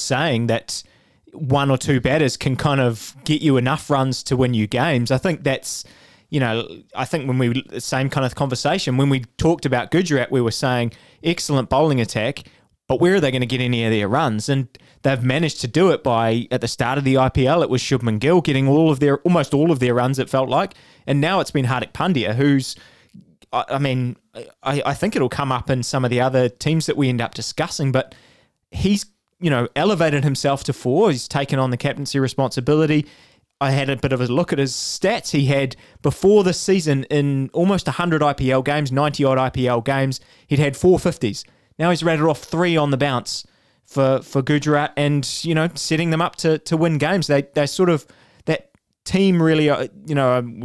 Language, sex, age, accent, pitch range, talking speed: English, male, 20-39, Australian, 130-155 Hz, 210 wpm